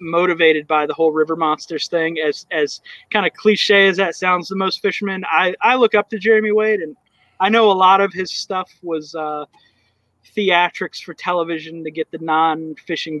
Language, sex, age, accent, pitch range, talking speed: English, male, 20-39, American, 155-195 Hz, 195 wpm